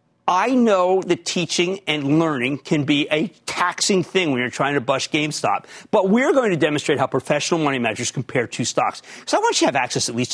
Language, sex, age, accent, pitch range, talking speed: English, male, 40-59, American, 140-215 Hz, 220 wpm